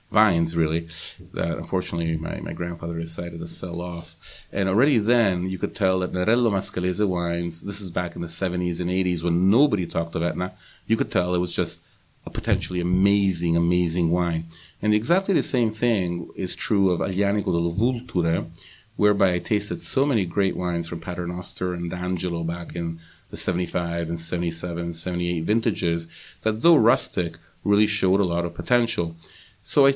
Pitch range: 85-100 Hz